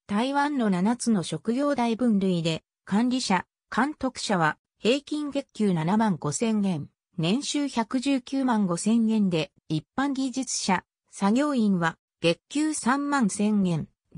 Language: Japanese